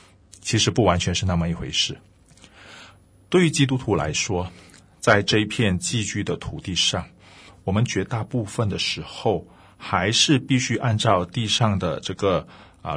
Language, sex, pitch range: Chinese, male, 90-125 Hz